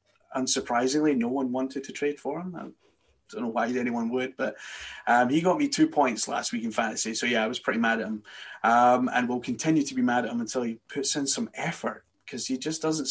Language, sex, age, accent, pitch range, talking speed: English, male, 20-39, British, 115-140 Hz, 240 wpm